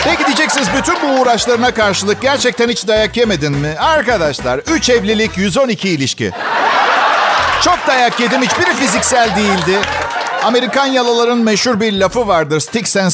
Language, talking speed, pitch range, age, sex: Turkish, 135 wpm, 195-250 Hz, 50-69, male